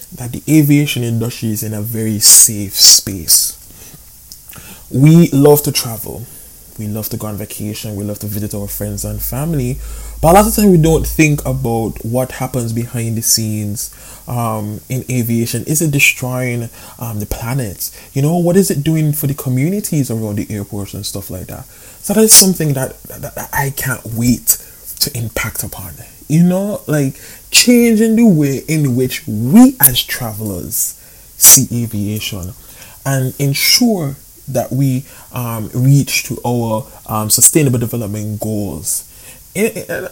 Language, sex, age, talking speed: English, male, 20-39, 160 wpm